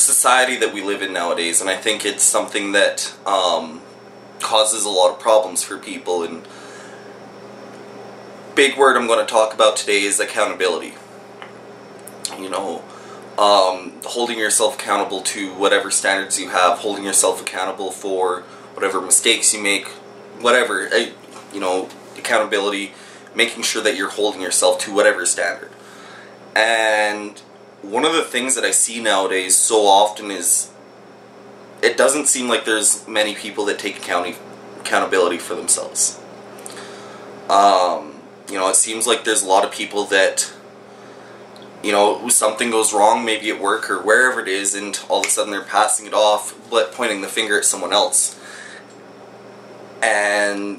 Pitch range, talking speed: 95-105 Hz, 150 wpm